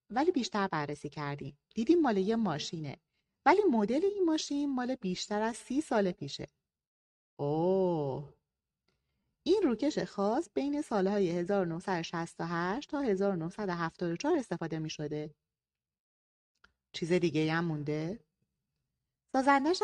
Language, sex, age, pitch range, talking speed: Persian, female, 30-49, 160-235 Hz, 110 wpm